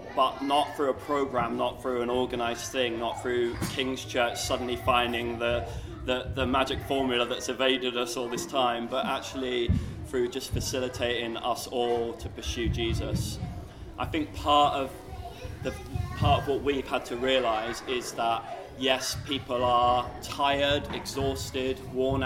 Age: 20-39